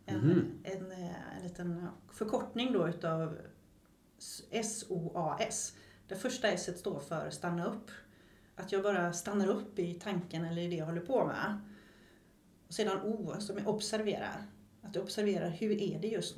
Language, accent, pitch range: Swedish, native, 165-200 Hz